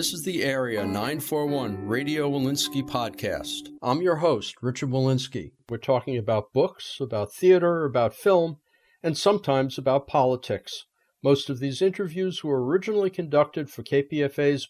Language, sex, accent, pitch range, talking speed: English, male, American, 130-165 Hz, 140 wpm